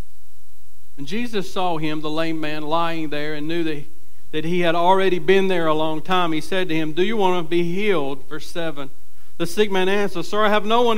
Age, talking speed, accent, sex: 60-79, 225 wpm, American, male